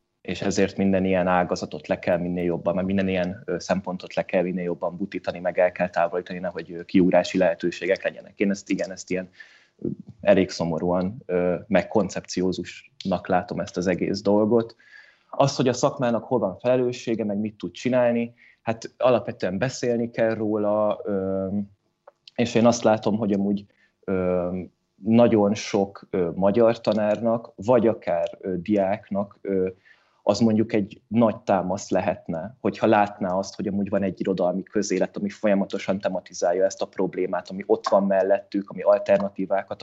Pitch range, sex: 95-110 Hz, male